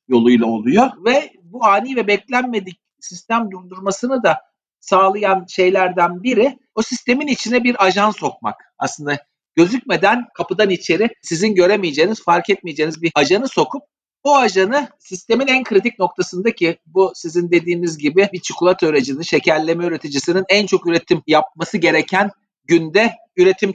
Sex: male